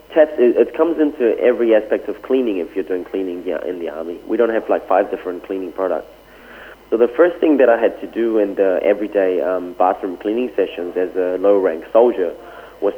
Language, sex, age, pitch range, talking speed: English, male, 30-49, 95-160 Hz, 205 wpm